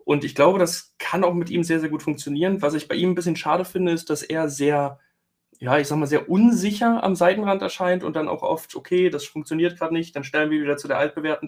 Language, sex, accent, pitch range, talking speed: German, male, German, 135-160 Hz, 255 wpm